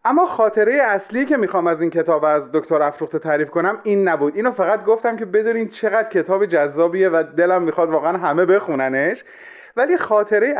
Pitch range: 150-220 Hz